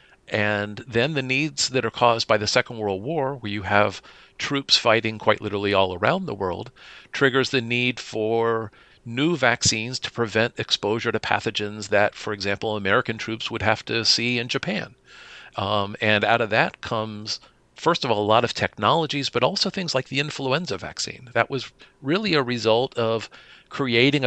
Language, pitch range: English, 105-130 Hz